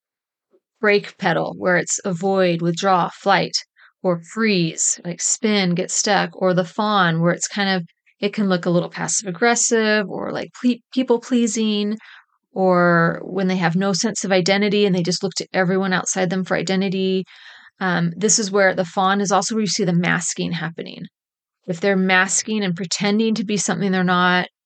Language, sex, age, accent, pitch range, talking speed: English, female, 30-49, American, 180-215 Hz, 180 wpm